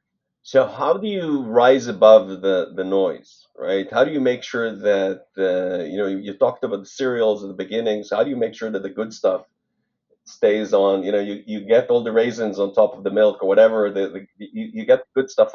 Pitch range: 105-170 Hz